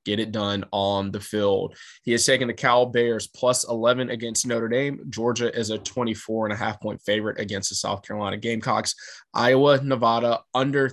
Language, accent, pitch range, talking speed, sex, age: English, American, 110-125 Hz, 185 wpm, male, 20-39